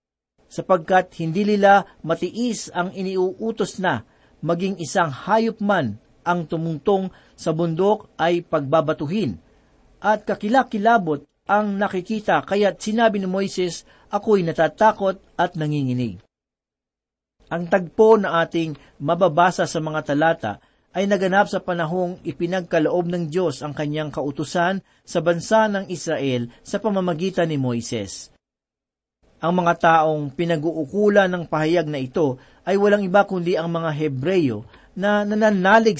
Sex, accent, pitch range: male, native, 155-200 Hz